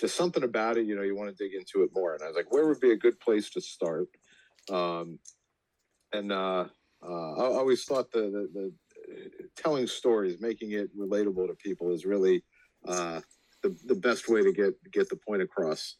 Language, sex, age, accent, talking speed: English, male, 50-69, American, 205 wpm